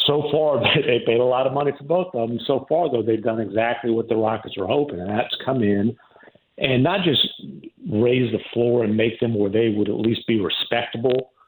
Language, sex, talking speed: English, male, 225 wpm